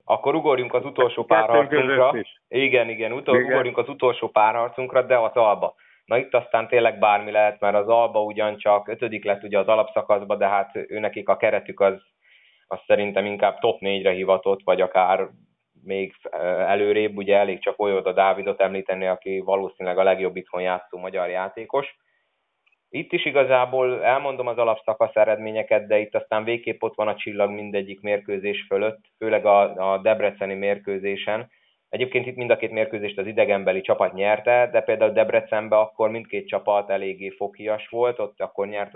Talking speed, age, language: 165 wpm, 20-39, Hungarian